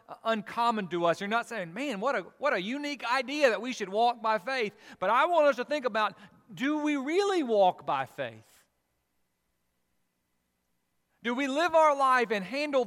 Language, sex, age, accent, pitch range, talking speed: English, male, 40-59, American, 165-255 Hz, 180 wpm